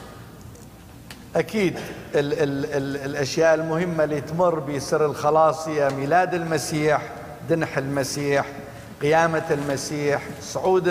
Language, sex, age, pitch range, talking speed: English, male, 50-69, 150-175 Hz, 75 wpm